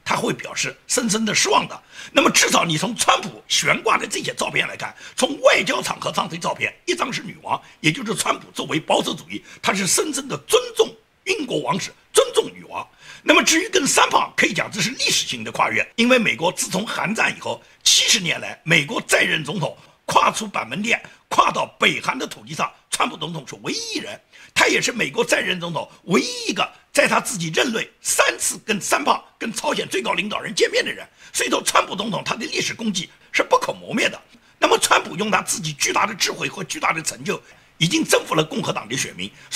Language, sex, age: Chinese, male, 50-69